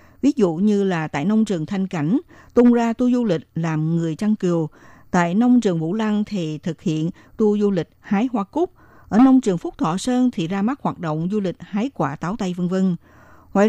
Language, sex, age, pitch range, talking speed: Vietnamese, female, 60-79, 170-235 Hz, 230 wpm